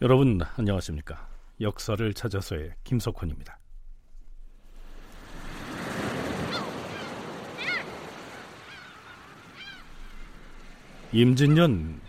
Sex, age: male, 40-59